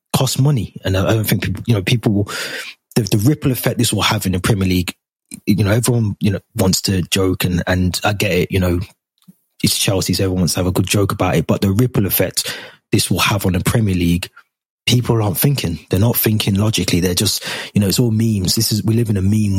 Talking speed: 250 wpm